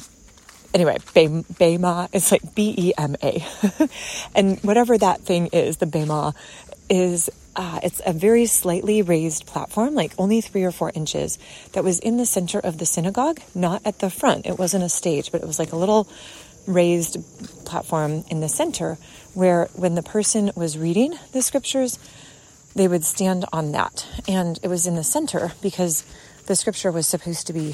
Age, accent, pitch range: 30-49, American, 165-205 Hz